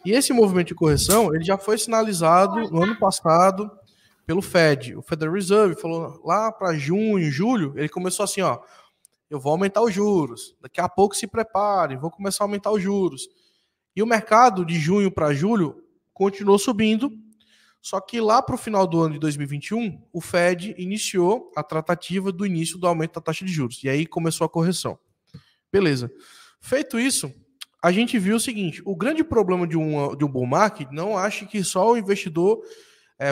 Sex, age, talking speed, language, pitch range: male, 20-39, 185 wpm, Portuguese, 155-205 Hz